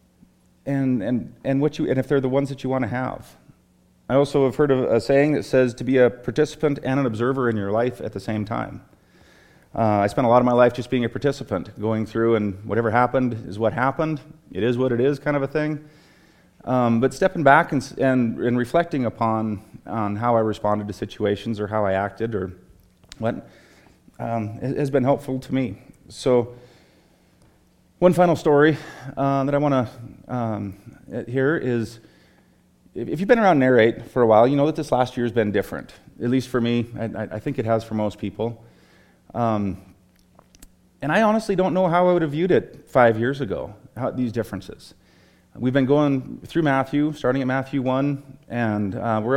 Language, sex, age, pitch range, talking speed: English, male, 30-49, 115-140 Hz, 200 wpm